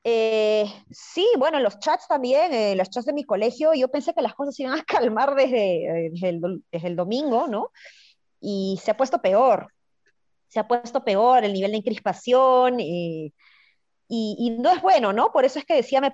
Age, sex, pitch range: 20-39, female, 195-260 Hz